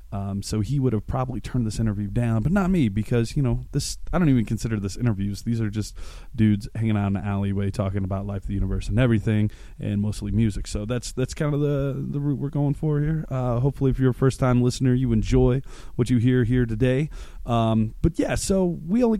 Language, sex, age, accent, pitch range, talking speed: English, male, 20-39, American, 105-130 Hz, 230 wpm